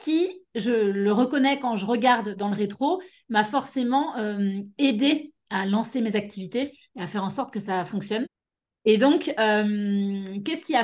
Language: French